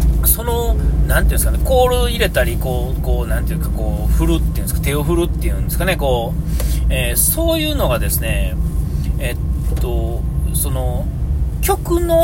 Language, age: Japanese, 30-49